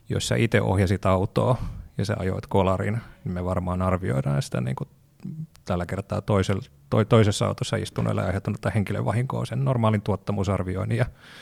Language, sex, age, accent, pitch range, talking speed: Finnish, male, 30-49, native, 100-120 Hz, 135 wpm